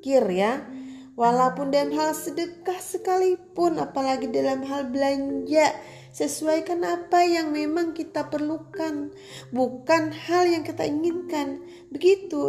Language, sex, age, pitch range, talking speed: Indonesian, female, 30-49, 210-340 Hz, 105 wpm